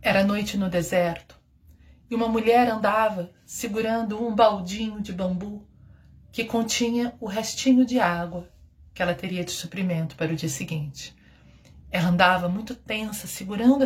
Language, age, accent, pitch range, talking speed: Portuguese, 40-59, Brazilian, 175-230 Hz, 145 wpm